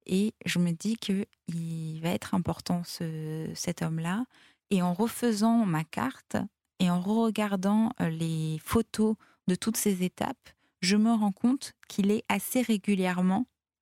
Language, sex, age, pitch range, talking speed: French, female, 20-39, 170-205 Hz, 145 wpm